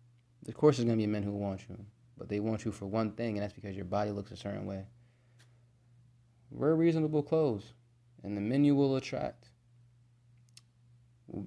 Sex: male